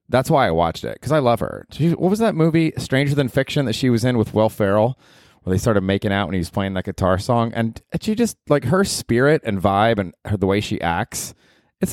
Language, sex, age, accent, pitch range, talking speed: English, male, 30-49, American, 100-140 Hz, 245 wpm